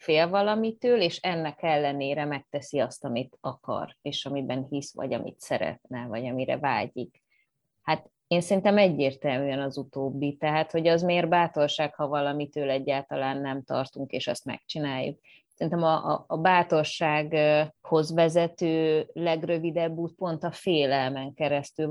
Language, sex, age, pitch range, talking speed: Hungarian, female, 20-39, 145-170 Hz, 135 wpm